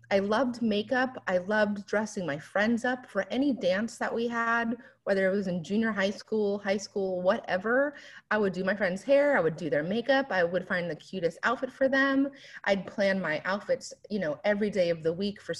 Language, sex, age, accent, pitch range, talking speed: English, female, 30-49, American, 185-250 Hz, 215 wpm